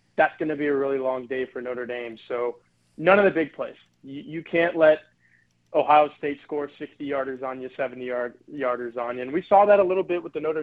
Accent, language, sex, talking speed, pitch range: American, English, male, 245 wpm, 130-150 Hz